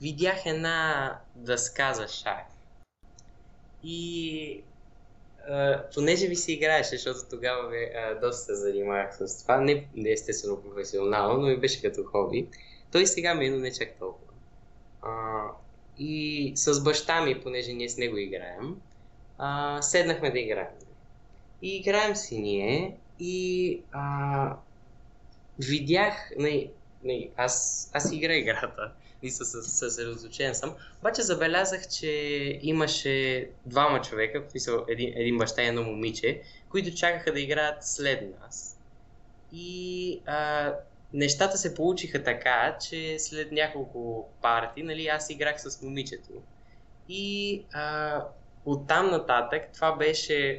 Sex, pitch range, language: male, 120-160 Hz, Bulgarian